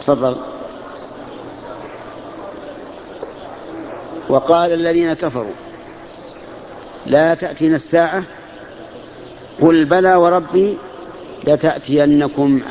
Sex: male